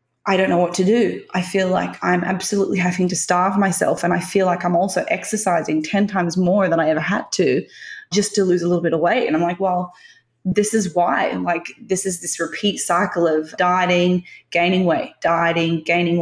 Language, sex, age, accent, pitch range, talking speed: English, female, 20-39, Australian, 165-190 Hz, 215 wpm